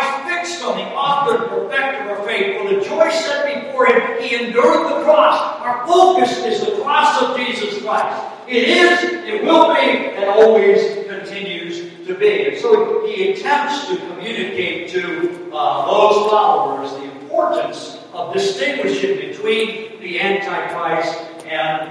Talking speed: 150 wpm